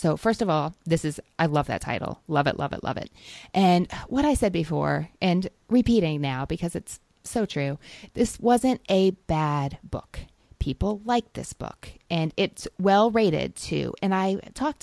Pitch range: 150-210 Hz